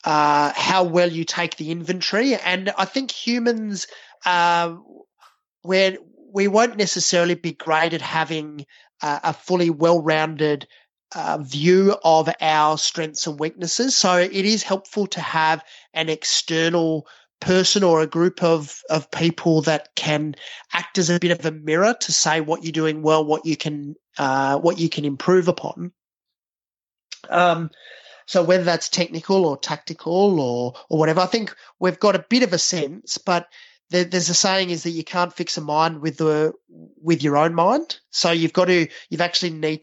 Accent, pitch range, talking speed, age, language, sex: Australian, 155-185 Hz, 170 wpm, 30-49, English, male